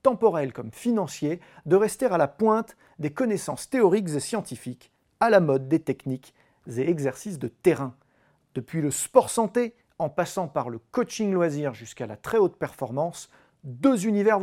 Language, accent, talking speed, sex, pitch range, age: French, French, 160 wpm, male, 135-220 Hz, 40-59